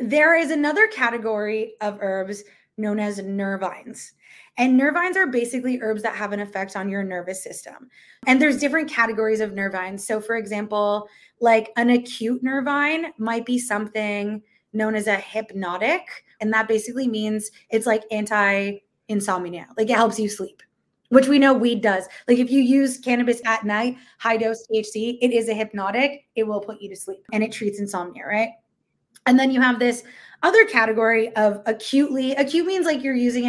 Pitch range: 205-250 Hz